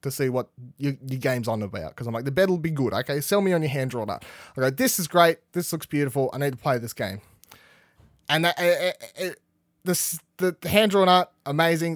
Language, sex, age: English, male, 20-39